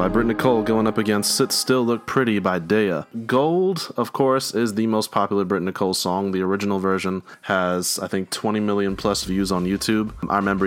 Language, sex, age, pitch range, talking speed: English, male, 20-39, 95-120 Hz, 200 wpm